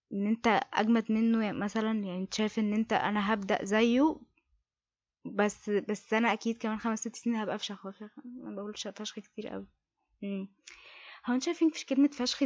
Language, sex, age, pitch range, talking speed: English, female, 20-39, 210-270 Hz, 155 wpm